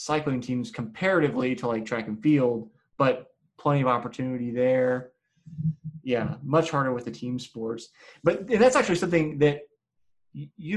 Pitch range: 120-155 Hz